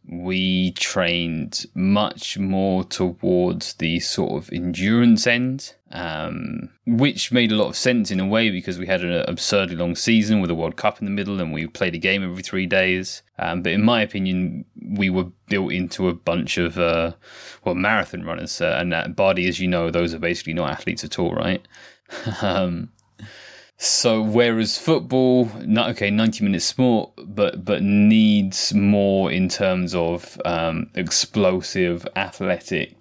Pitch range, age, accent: 85-105 Hz, 20-39, British